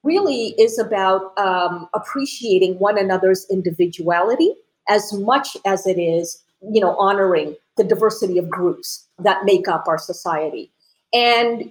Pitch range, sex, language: 195-275 Hz, female, English